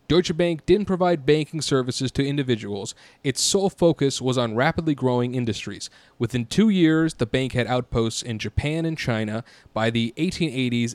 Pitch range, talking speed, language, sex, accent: 115-150 Hz, 165 wpm, English, male, American